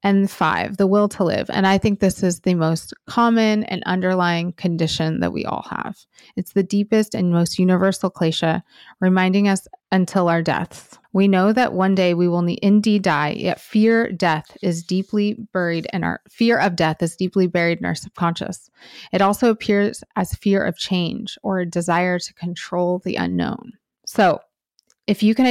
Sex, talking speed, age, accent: female, 180 wpm, 30-49, American